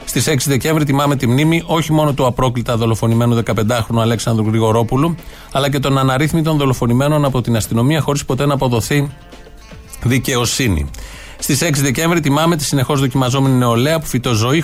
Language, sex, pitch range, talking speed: Greek, male, 120-150 Hz, 155 wpm